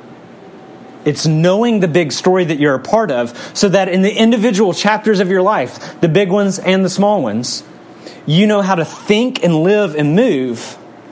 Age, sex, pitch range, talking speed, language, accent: 30-49, male, 150-200 Hz, 190 wpm, English, American